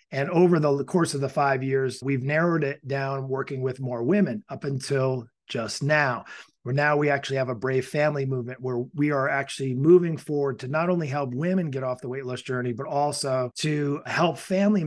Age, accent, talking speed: 30-49, American, 205 wpm